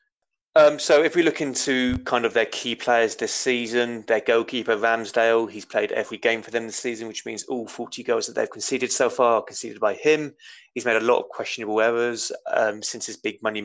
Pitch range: 110-145 Hz